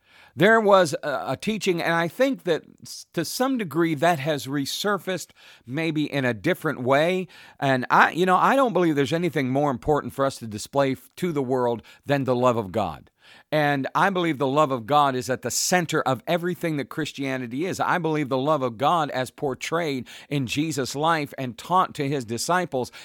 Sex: male